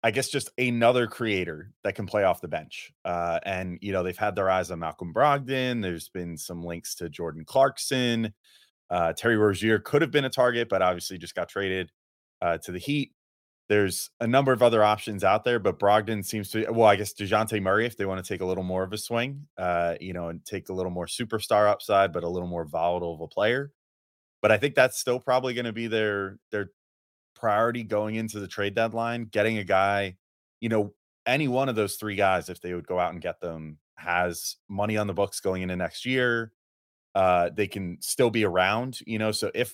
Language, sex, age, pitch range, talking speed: English, male, 30-49, 90-120 Hz, 220 wpm